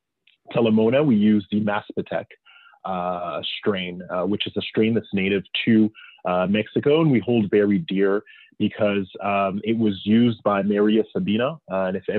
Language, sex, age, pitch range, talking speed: English, male, 20-39, 95-115 Hz, 165 wpm